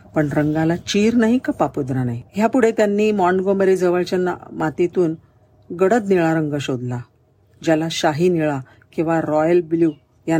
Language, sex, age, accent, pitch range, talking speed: Marathi, female, 50-69, native, 140-175 Hz, 140 wpm